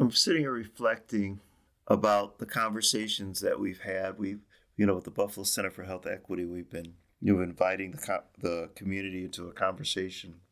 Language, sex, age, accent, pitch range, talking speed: English, male, 40-59, American, 95-115 Hz, 185 wpm